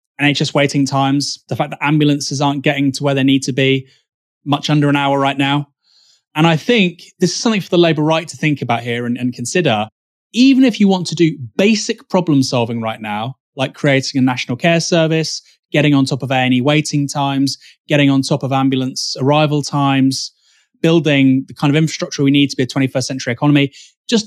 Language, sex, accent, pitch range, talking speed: English, male, British, 135-175 Hz, 205 wpm